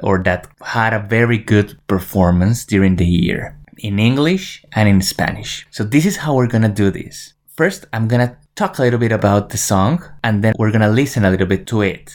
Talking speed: 225 wpm